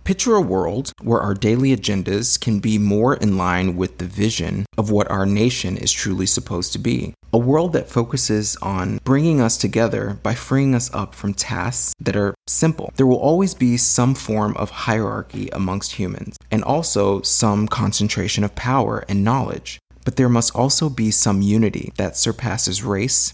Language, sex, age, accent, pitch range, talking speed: English, male, 30-49, American, 100-125 Hz, 175 wpm